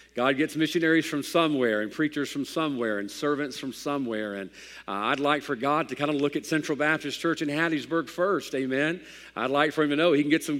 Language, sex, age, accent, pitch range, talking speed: English, male, 50-69, American, 120-150 Hz, 230 wpm